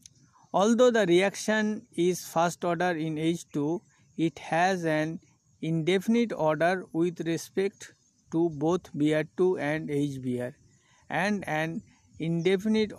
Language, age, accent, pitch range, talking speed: English, 60-79, Indian, 150-185 Hz, 105 wpm